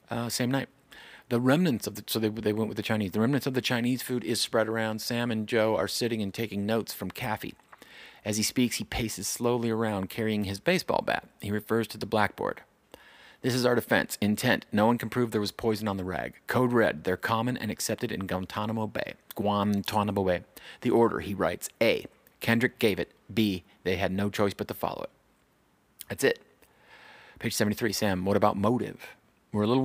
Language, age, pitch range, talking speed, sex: English, 40-59, 105-120 Hz, 205 wpm, male